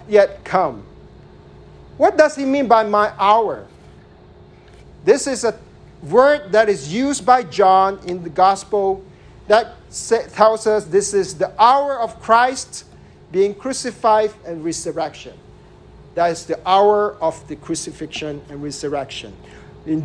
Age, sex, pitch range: 50-69, male, 160-215 Hz